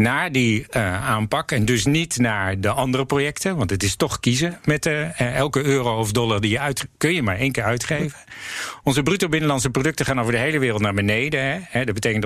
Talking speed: 225 wpm